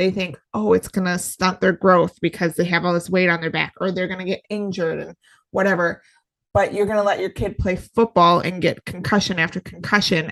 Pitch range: 180-215 Hz